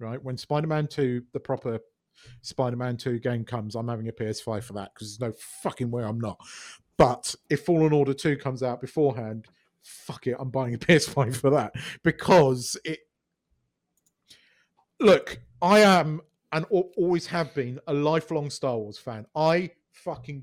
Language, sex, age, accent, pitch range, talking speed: English, male, 40-59, British, 130-175 Hz, 160 wpm